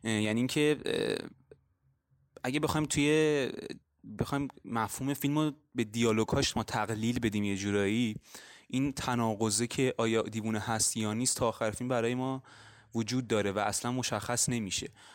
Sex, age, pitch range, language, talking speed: male, 20-39, 105-130 Hz, Persian, 135 wpm